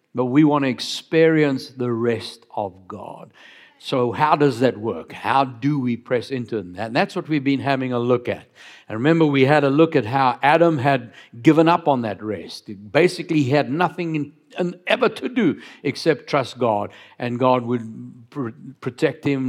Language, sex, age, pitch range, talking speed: English, male, 60-79, 125-155 Hz, 180 wpm